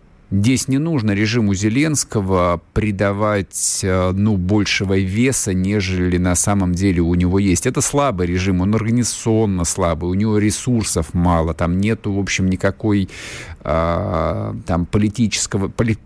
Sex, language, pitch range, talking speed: male, Russian, 95-115 Hz, 120 wpm